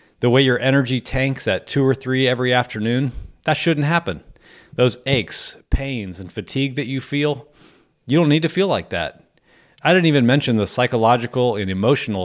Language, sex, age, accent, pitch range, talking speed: English, male, 30-49, American, 105-135 Hz, 180 wpm